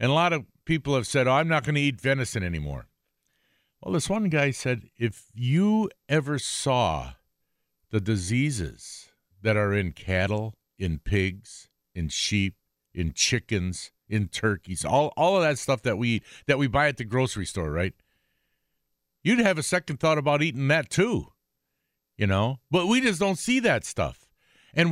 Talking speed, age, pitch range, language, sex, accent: 175 wpm, 50-69, 95-150 Hz, English, male, American